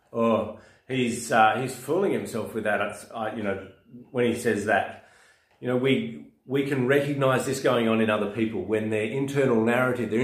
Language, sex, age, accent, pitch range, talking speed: English, male, 30-49, Australian, 105-130 Hz, 190 wpm